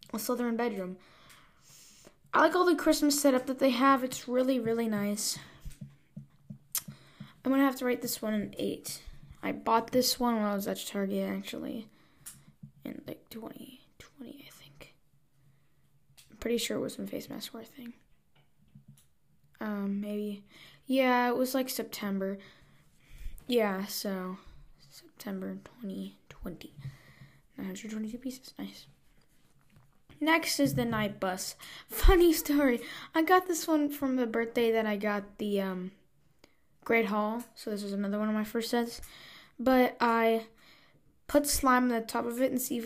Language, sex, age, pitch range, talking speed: English, female, 10-29, 205-255 Hz, 145 wpm